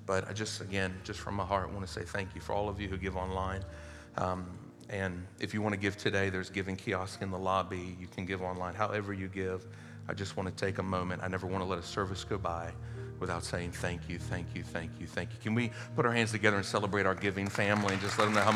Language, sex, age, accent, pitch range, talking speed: English, male, 40-59, American, 95-115 Hz, 275 wpm